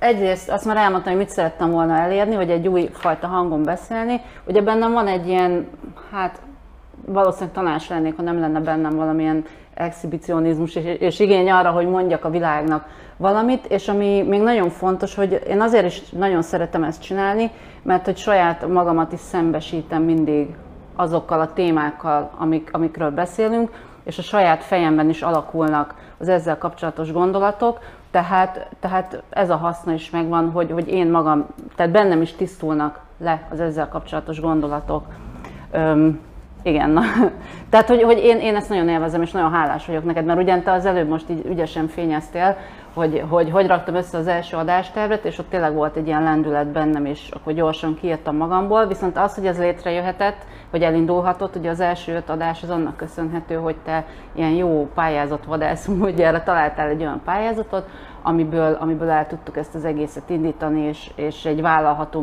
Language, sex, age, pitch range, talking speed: Hungarian, female, 30-49, 155-185 Hz, 175 wpm